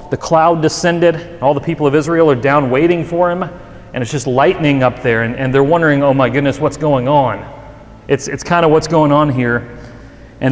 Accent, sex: American, male